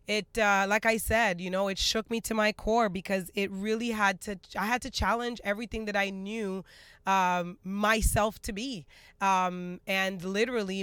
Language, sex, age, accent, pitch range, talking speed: English, female, 20-39, American, 185-225 Hz, 185 wpm